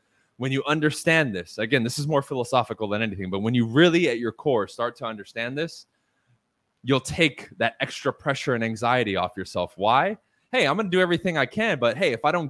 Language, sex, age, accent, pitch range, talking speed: English, male, 20-39, American, 125-165 Hz, 215 wpm